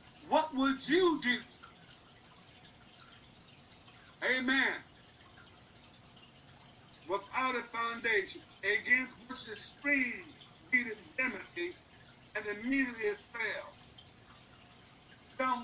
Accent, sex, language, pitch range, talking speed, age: American, male, English, 185-245 Hz, 75 wpm, 60-79